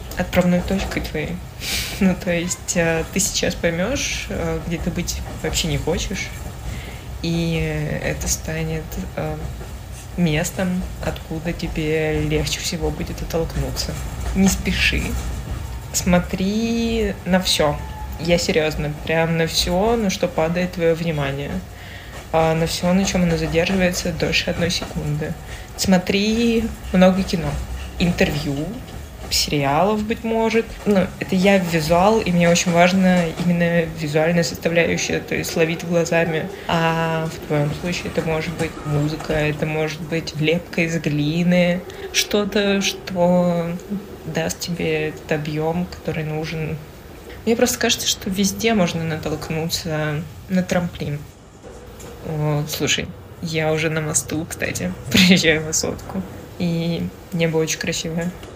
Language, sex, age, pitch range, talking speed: Russian, female, 20-39, 155-180 Hz, 120 wpm